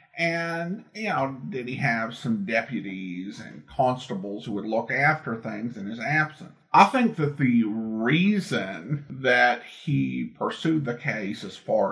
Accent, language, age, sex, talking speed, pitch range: American, English, 50-69, male, 150 wpm, 115-185 Hz